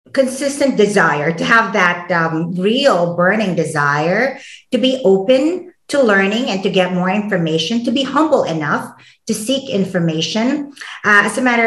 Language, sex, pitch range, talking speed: English, female, 180-235 Hz, 155 wpm